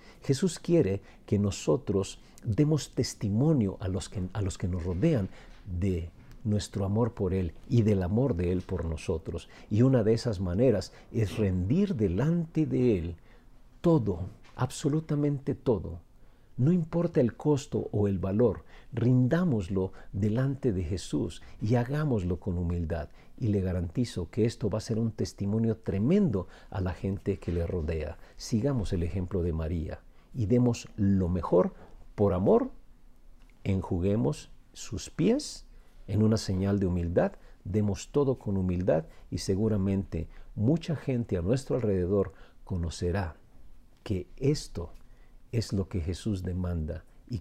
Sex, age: male, 50-69